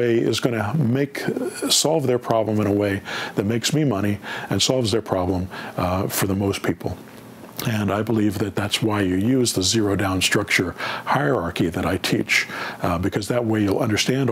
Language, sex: English, male